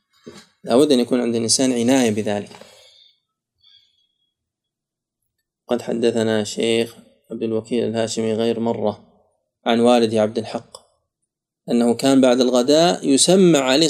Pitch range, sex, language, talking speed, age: 115-135 Hz, male, Arabic, 110 wpm, 20-39